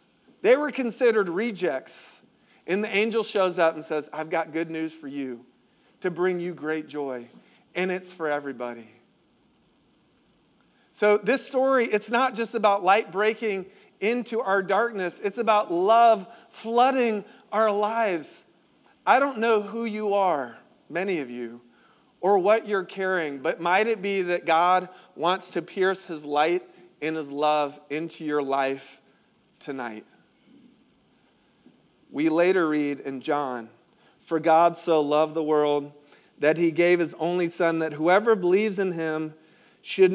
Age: 40-59